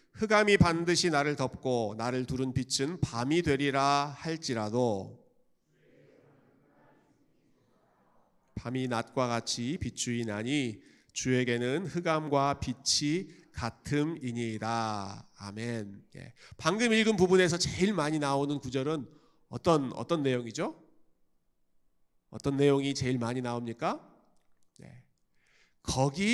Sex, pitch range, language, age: male, 125-185 Hz, Korean, 40-59